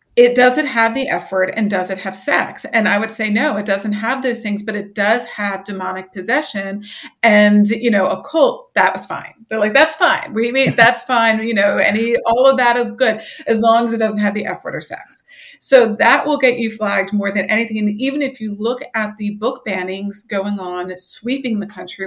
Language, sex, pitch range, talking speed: English, female, 190-230 Hz, 235 wpm